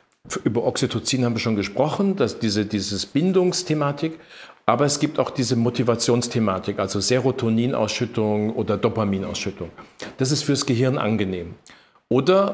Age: 50-69